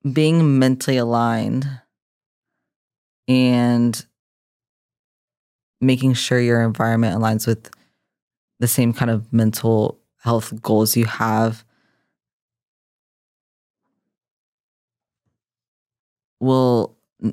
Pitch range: 110-125 Hz